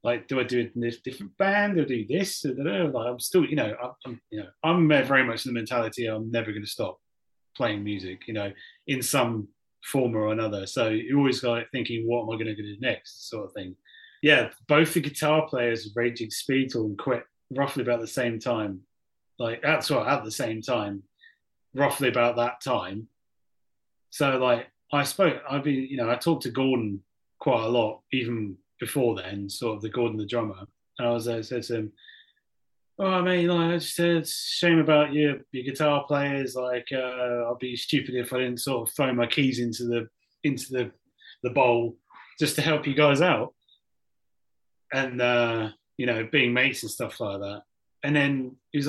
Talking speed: 205 wpm